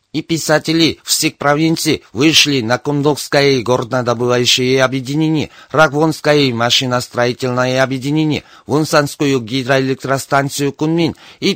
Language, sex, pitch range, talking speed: Russian, male, 125-150 Hz, 85 wpm